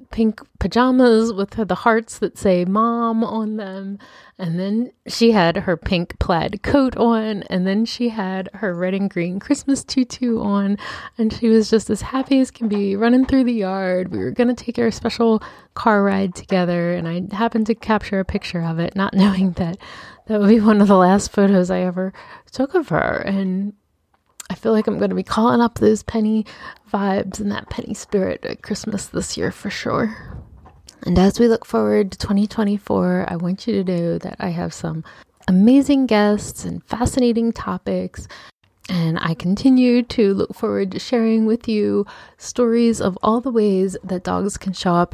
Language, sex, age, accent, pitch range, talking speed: English, female, 20-39, American, 180-225 Hz, 190 wpm